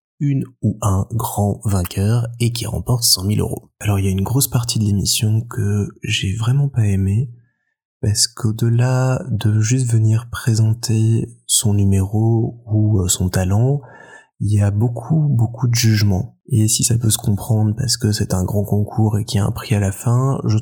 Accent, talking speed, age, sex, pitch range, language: French, 190 wpm, 20-39, male, 105-120 Hz, French